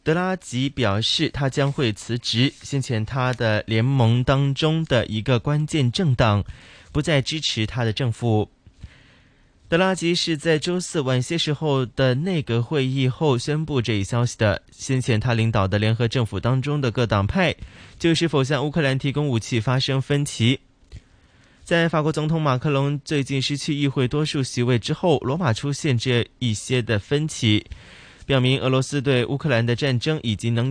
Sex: male